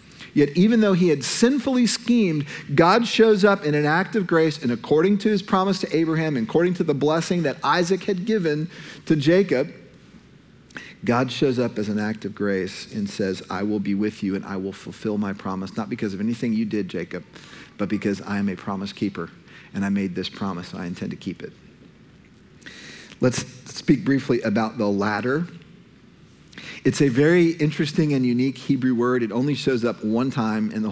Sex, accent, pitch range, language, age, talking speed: male, American, 110-165 Hz, English, 40-59, 195 wpm